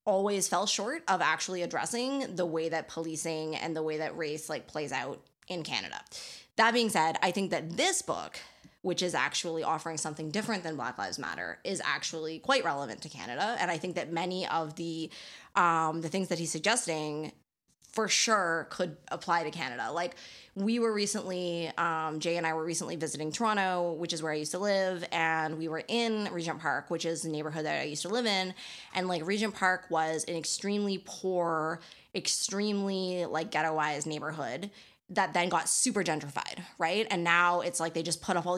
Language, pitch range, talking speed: English, 160-195 Hz, 195 wpm